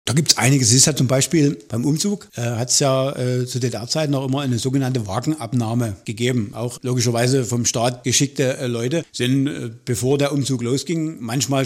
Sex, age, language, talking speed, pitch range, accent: male, 50-69, German, 200 wpm, 125-150 Hz, German